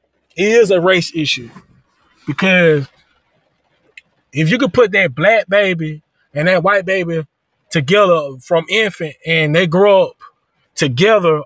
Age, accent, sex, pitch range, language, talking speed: 20-39, American, male, 165-200 Hz, English, 130 wpm